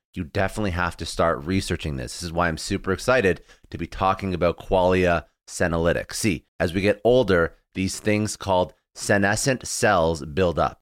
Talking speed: 170 wpm